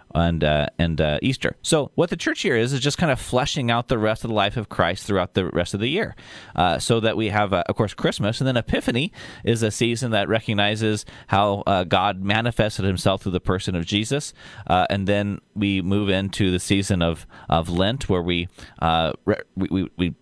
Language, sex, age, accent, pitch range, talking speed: English, male, 30-49, American, 95-115 Hz, 220 wpm